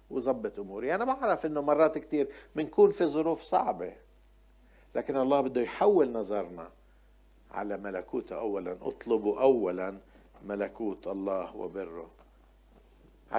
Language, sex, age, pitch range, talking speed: Arabic, male, 60-79, 115-160 Hz, 110 wpm